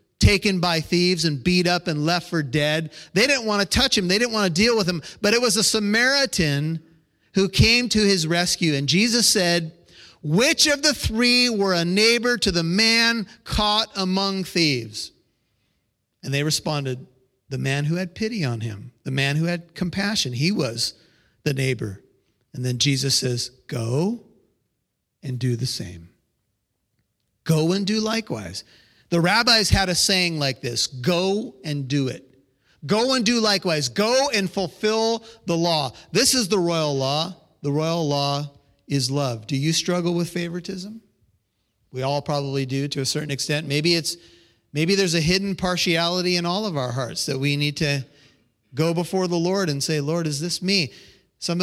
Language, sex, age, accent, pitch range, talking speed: English, male, 40-59, American, 140-195 Hz, 175 wpm